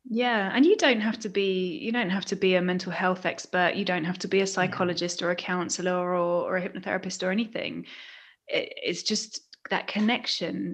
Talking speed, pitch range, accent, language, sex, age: 200 wpm, 180-215 Hz, British, English, female, 20-39